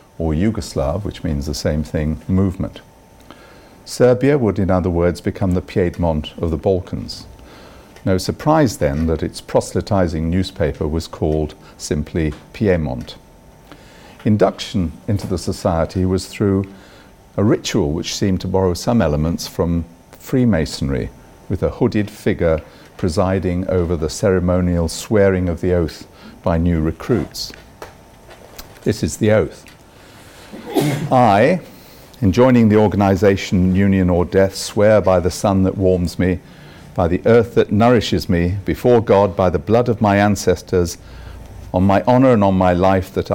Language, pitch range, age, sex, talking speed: English, 85-100 Hz, 50-69, male, 140 wpm